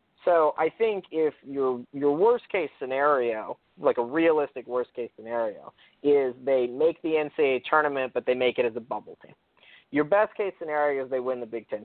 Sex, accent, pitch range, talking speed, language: male, American, 125-160 Hz, 180 wpm, English